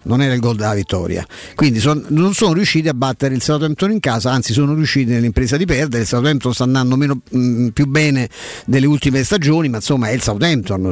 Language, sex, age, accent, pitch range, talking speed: Italian, male, 50-69, native, 125-170 Hz, 215 wpm